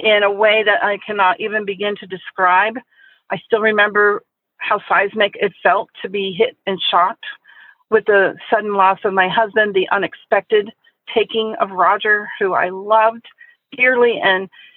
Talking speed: 160 wpm